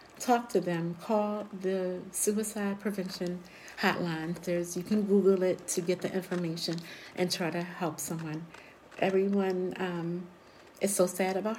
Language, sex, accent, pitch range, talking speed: English, female, American, 175-215 Hz, 145 wpm